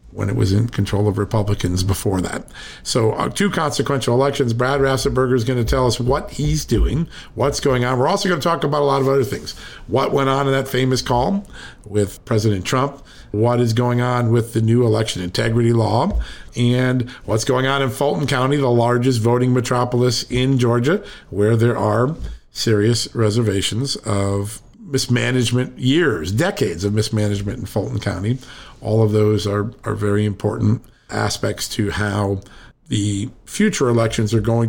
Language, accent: English, American